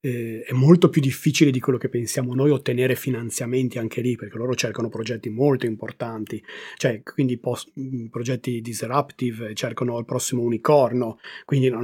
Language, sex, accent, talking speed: Italian, male, native, 145 wpm